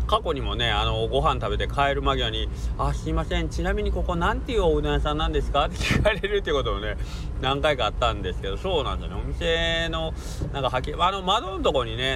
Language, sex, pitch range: Japanese, male, 100-150 Hz